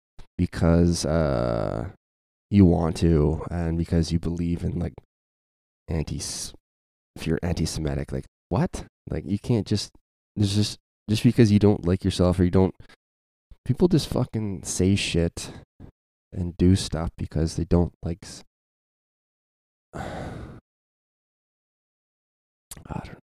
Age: 20-39